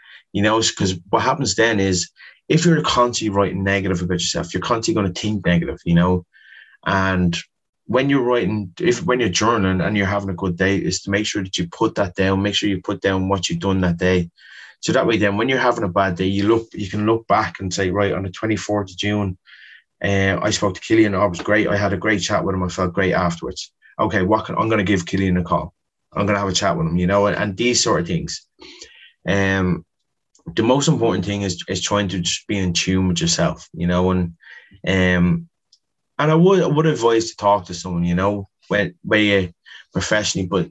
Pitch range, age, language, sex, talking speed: 90-105 Hz, 20-39, English, male, 235 wpm